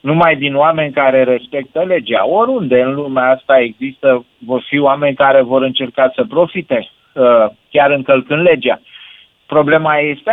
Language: Romanian